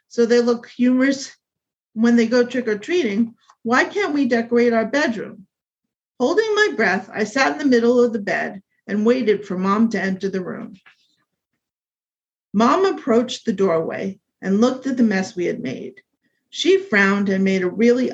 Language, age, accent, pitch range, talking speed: English, 50-69, American, 205-265 Hz, 170 wpm